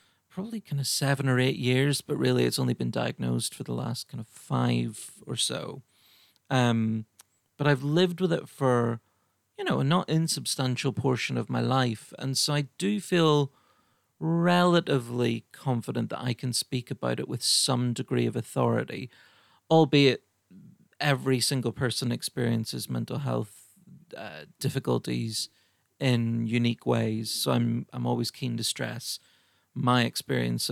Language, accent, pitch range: English, British, 115-135 Hz